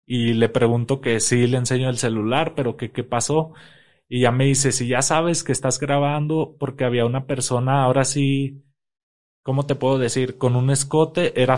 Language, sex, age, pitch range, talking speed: Spanish, male, 20-39, 120-140 Hz, 190 wpm